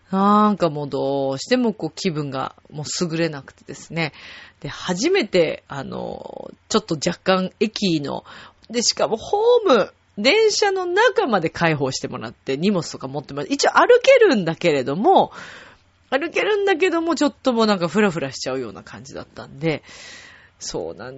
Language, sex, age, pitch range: Japanese, female, 30-49, 170-260 Hz